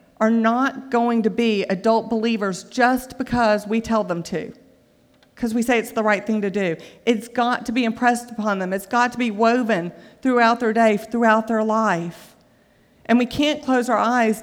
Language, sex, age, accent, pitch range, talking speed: English, female, 50-69, American, 210-250 Hz, 190 wpm